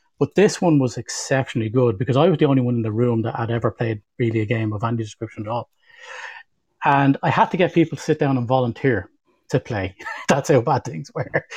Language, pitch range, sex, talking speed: English, 120-155 Hz, male, 235 wpm